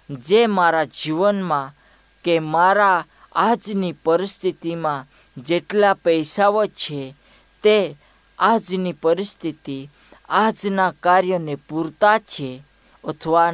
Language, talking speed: Hindi, 80 wpm